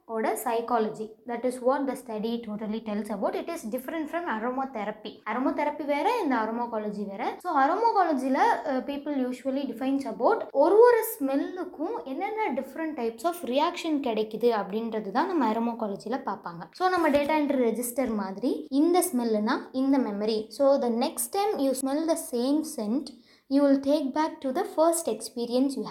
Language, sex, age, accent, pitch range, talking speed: Tamil, female, 20-39, native, 225-295 Hz, 165 wpm